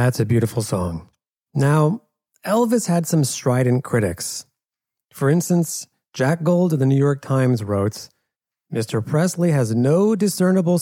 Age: 40-59